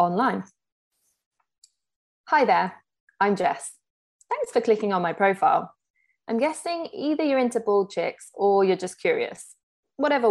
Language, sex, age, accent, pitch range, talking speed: English, female, 20-39, British, 175-245 Hz, 135 wpm